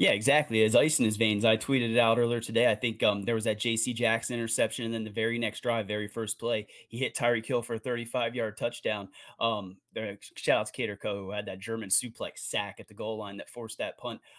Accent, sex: American, male